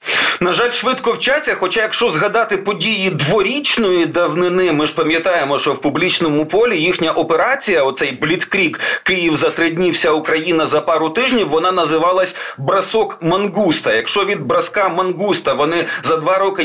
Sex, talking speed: male, 150 wpm